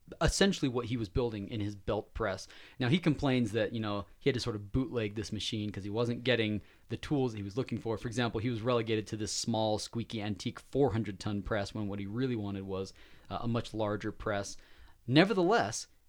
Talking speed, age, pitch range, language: 215 wpm, 20-39, 105-130 Hz, English